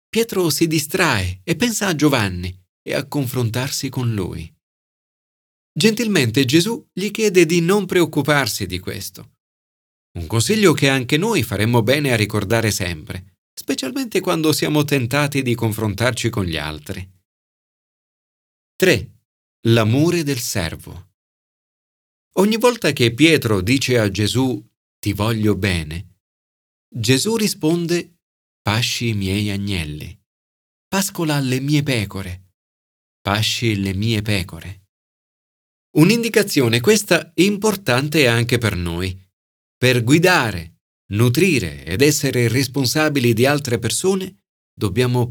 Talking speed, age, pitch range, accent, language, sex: 110 wpm, 40-59, 95-150 Hz, native, Italian, male